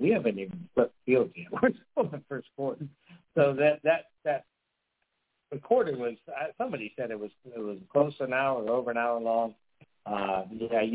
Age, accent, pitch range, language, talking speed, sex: 50-69, American, 105-135 Hz, English, 175 wpm, male